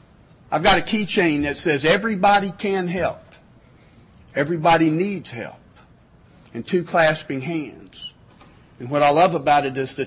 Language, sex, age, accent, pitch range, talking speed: English, male, 50-69, American, 140-170 Hz, 145 wpm